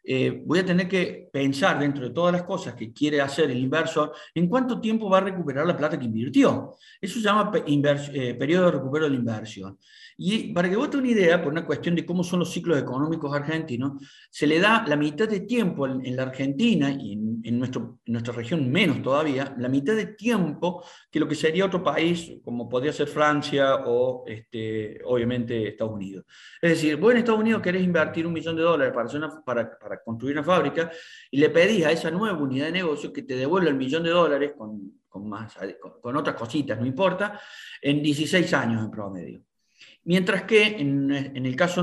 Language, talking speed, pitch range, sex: Spanish, 210 wpm, 130-185 Hz, male